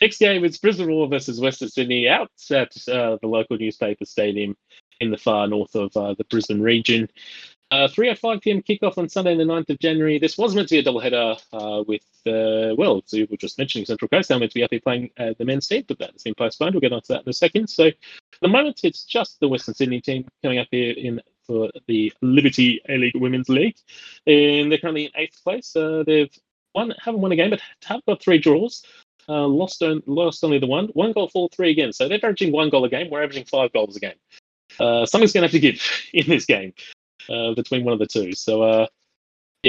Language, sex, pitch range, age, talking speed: English, male, 110-160 Hz, 30-49, 235 wpm